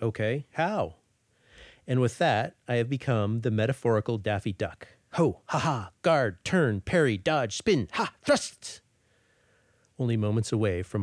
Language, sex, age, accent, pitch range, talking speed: English, male, 40-59, American, 110-130 Hz, 135 wpm